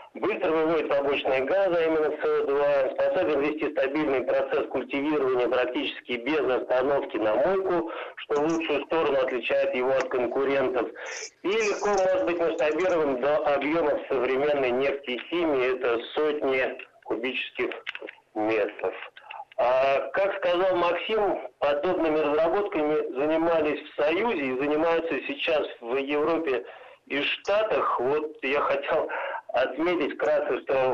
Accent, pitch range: native, 140-200 Hz